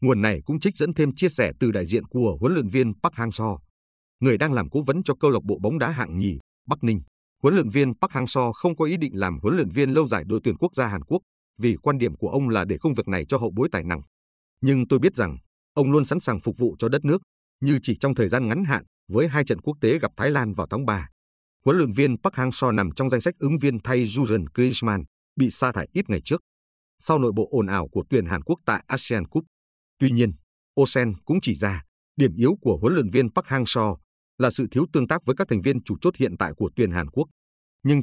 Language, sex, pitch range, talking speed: Vietnamese, male, 100-140 Hz, 260 wpm